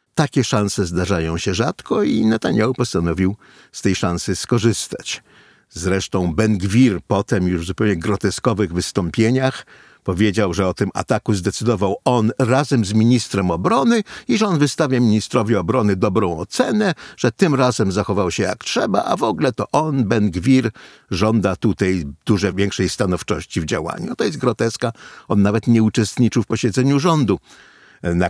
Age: 50-69